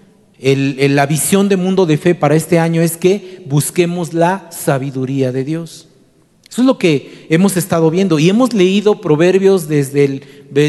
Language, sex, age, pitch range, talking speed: Spanish, male, 40-59, 155-195 Hz, 180 wpm